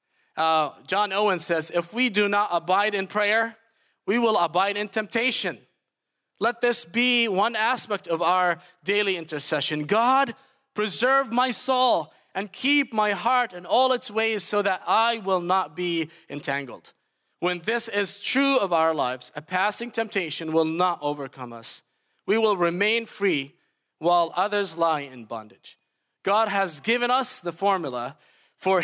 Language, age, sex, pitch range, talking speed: English, 30-49, male, 155-215 Hz, 155 wpm